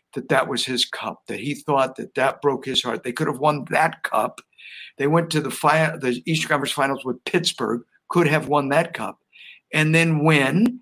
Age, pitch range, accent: 60-79, 135-160 Hz, American